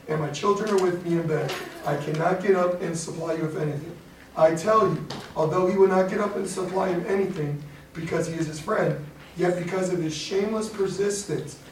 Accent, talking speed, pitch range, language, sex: American, 210 wpm, 155-185 Hz, English, male